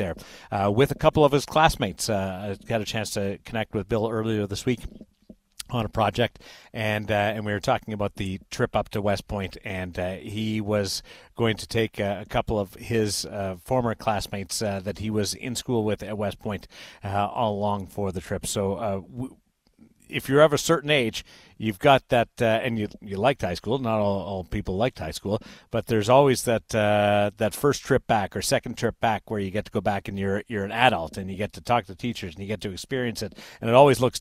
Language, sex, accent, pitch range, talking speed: English, male, American, 100-115 Hz, 235 wpm